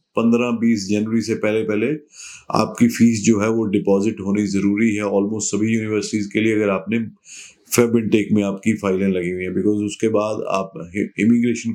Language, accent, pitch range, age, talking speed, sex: Hindi, native, 105-120 Hz, 30-49, 170 wpm, male